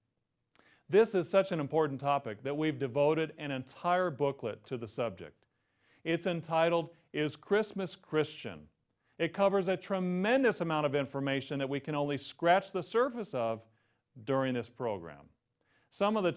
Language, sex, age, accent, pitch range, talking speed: English, male, 40-59, American, 125-170 Hz, 150 wpm